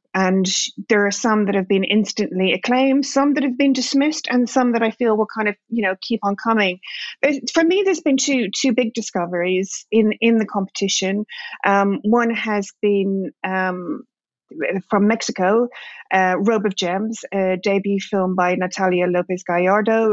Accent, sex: British, female